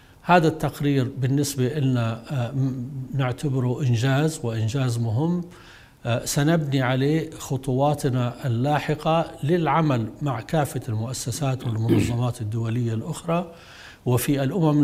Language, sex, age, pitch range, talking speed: Arabic, male, 60-79, 120-155 Hz, 85 wpm